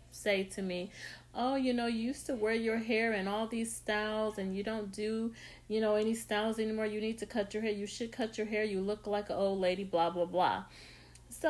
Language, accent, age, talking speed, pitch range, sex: English, American, 40-59, 240 wpm, 195-255 Hz, female